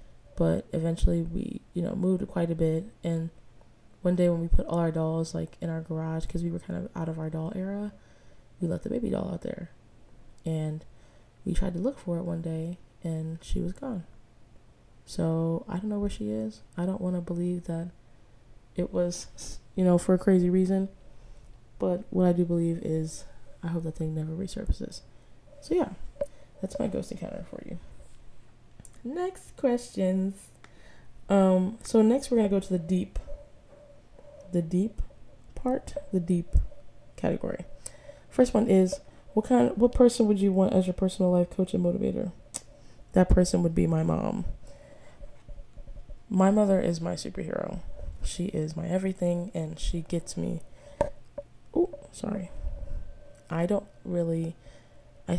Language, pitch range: English, 155-190 Hz